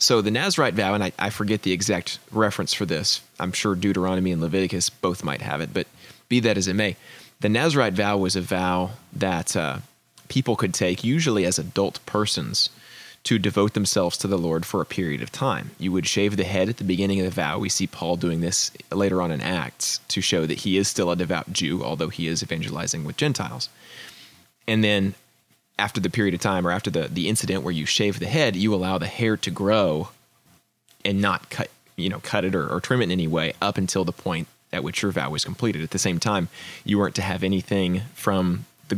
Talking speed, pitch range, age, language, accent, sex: 225 wpm, 90-105 Hz, 20-39, English, American, male